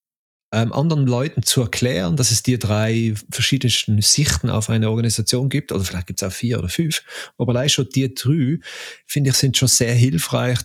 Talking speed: 185 wpm